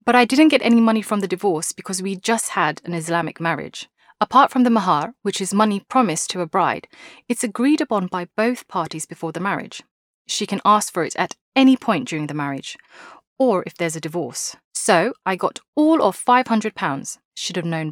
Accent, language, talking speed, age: British, English, 205 wpm, 30-49